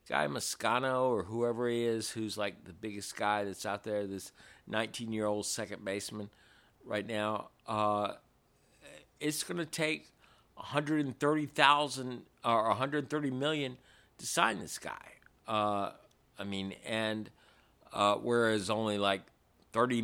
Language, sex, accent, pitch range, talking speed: English, male, American, 100-120 Hz, 130 wpm